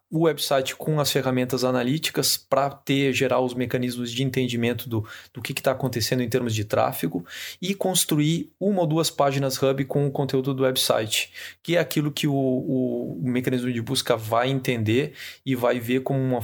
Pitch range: 125-140 Hz